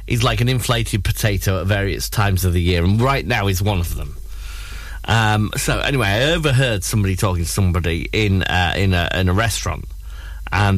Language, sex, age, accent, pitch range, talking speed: English, male, 30-49, British, 90-115 Hz, 195 wpm